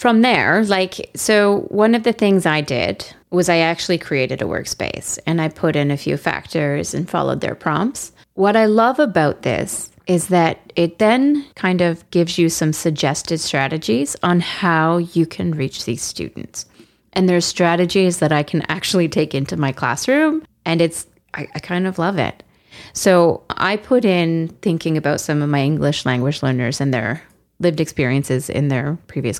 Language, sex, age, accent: English, female, 30-49, American